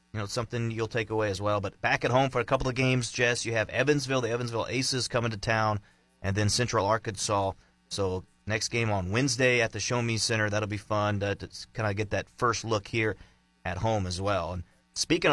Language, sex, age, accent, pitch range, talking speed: English, male, 30-49, American, 105-140 Hz, 230 wpm